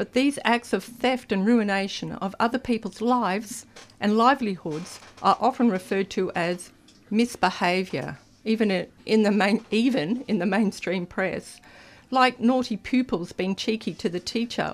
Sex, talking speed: female, 135 wpm